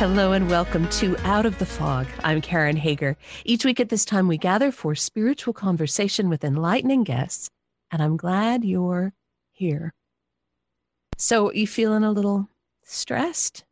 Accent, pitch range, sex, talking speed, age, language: American, 175-240 Hz, female, 155 wpm, 50-69, English